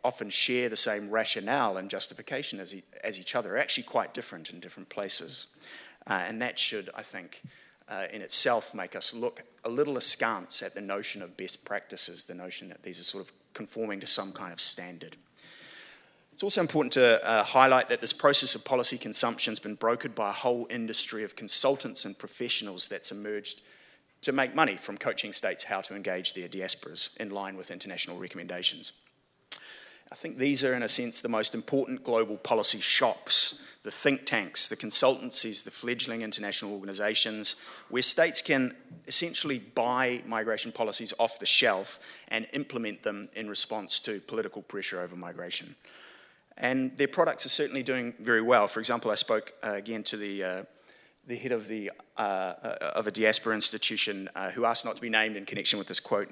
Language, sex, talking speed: English, male, 180 wpm